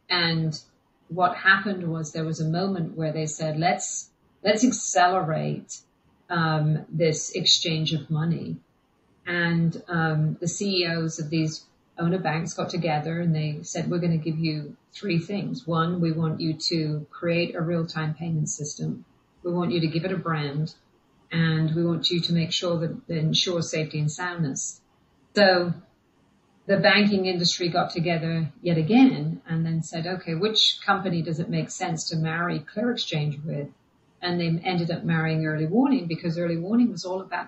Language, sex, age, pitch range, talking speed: English, female, 40-59, 160-180 Hz, 170 wpm